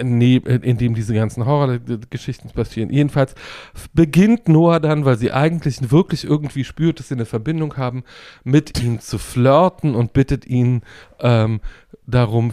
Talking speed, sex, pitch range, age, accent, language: 145 wpm, male, 110-140 Hz, 40-59, German, German